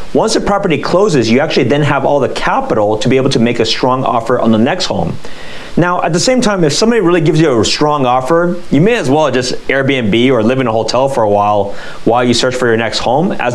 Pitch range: 110-145 Hz